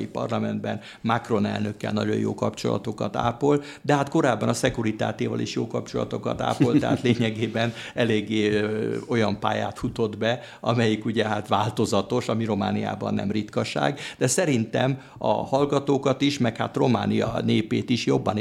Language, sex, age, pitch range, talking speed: Hungarian, male, 60-79, 105-125 Hz, 140 wpm